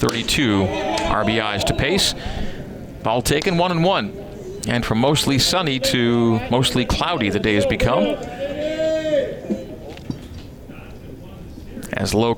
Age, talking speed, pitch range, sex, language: 40-59, 105 wpm, 110-180 Hz, male, English